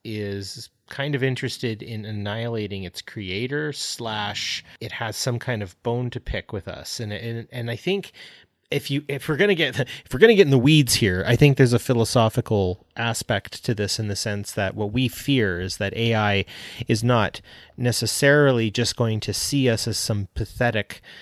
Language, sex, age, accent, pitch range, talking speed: English, male, 30-49, American, 100-130 Hz, 190 wpm